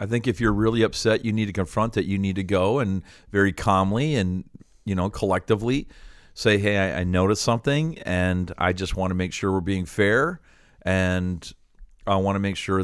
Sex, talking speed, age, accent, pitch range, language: male, 200 wpm, 50-69, American, 95-110 Hz, English